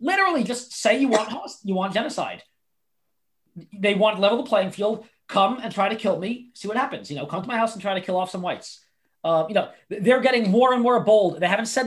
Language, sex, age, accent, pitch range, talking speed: English, male, 30-49, American, 185-230 Hz, 250 wpm